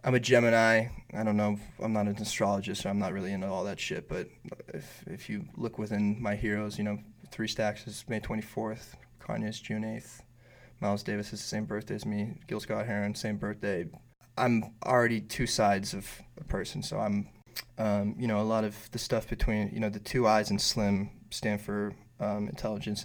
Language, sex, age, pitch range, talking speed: English, male, 20-39, 105-120 Hz, 210 wpm